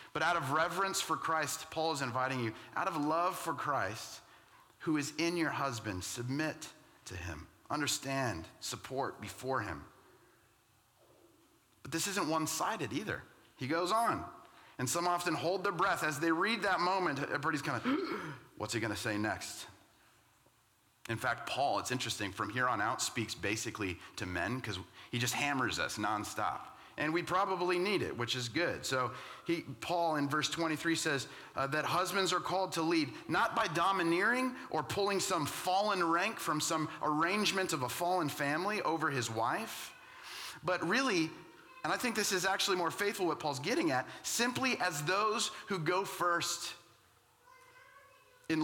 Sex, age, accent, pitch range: male, 30-49, American, 125-180 Hz